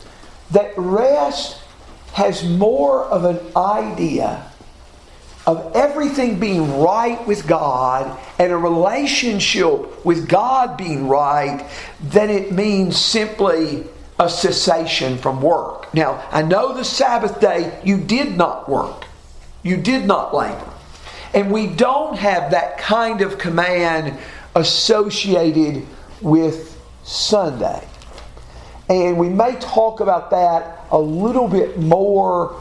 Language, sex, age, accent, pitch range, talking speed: English, male, 50-69, American, 160-210 Hz, 115 wpm